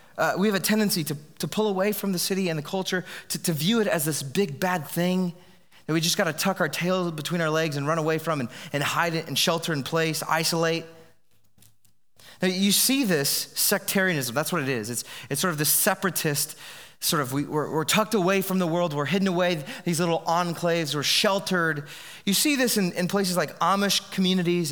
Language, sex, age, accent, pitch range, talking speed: English, male, 30-49, American, 165-220 Hz, 220 wpm